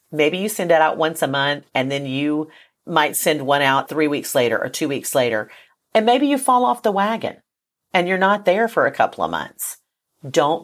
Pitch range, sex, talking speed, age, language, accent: 140-180 Hz, female, 220 wpm, 40-59, English, American